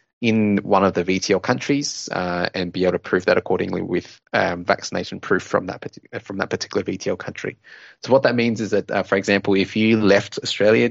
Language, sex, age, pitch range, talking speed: English, male, 20-39, 95-110 Hz, 210 wpm